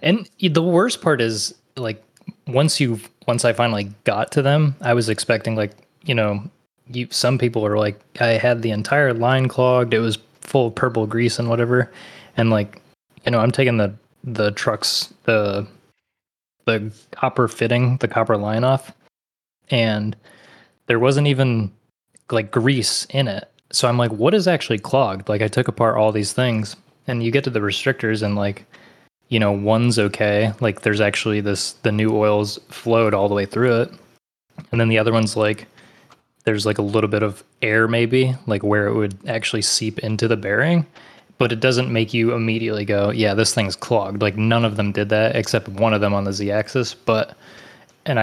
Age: 20-39